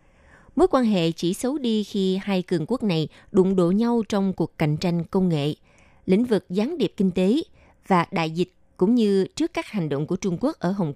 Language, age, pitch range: Vietnamese, 20-39, 170-220 Hz